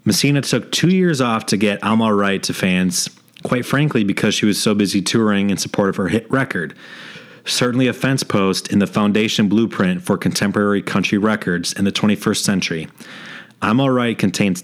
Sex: male